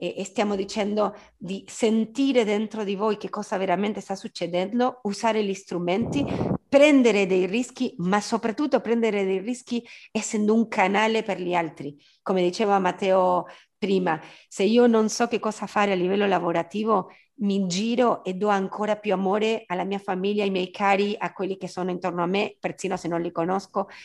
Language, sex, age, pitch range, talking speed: Italian, female, 40-59, 180-215 Hz, 170 wpm